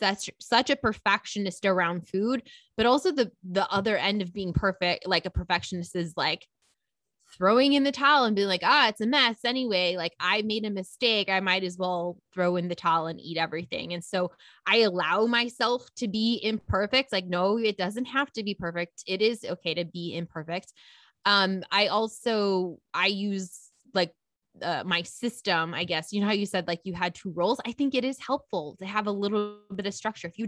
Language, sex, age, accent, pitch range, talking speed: English, female, 20-39, American, 175-225 Hz, 205 wpm